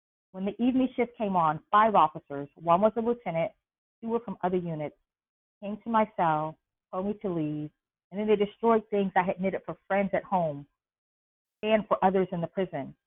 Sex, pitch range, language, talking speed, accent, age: female, 155-210 Hz, English, 195 wpm, American, 40-59